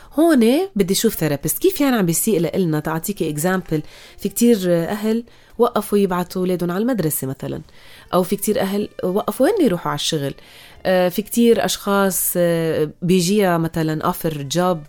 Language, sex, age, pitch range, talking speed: Arabic, female, 30-49, 160-210 Hz, 145 wpm